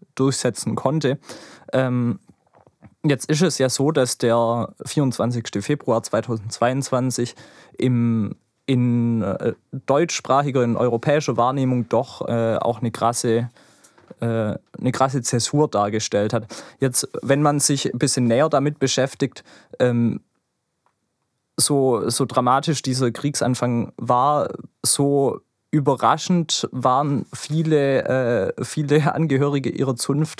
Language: German